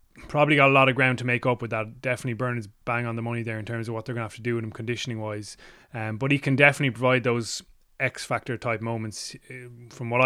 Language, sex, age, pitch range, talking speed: English, male, 20-39, 110-125 Hz, 250 wpm